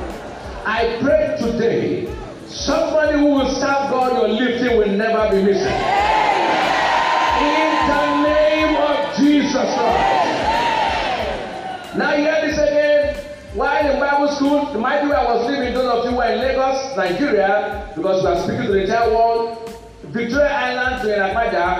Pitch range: 205-280 Hz